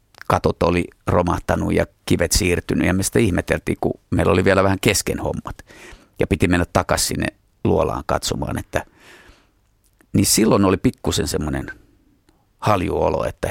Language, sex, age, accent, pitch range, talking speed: Finnish, male, 30-49, native, 90-105 Hz, 140 wpm